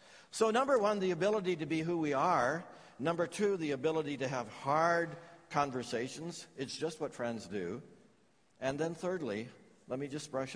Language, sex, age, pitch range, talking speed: English, male, 60-79, 110-155 Hz, 170 wpm